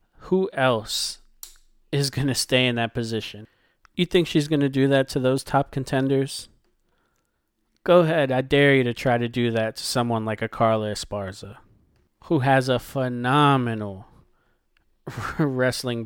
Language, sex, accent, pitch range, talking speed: English, male, American, 115-135 Hz, 155 wpm